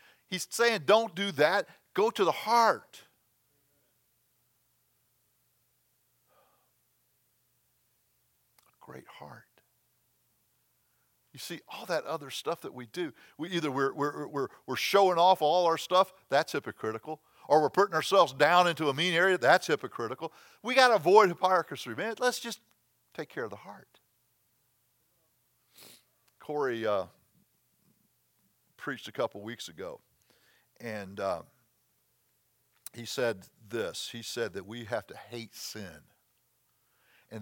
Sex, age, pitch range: male, 50-69, 120-185 Hz